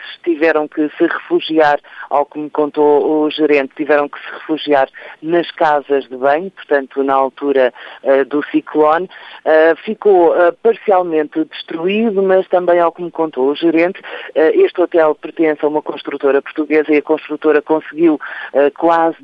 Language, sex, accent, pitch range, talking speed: Portuguese, male, Portuguese, 140-165 Hz, 145 wpm